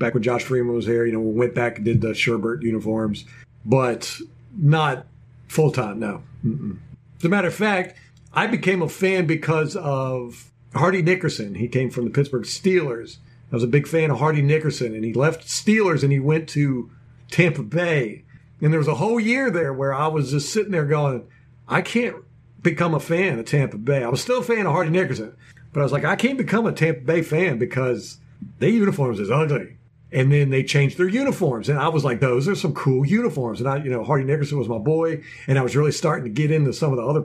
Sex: male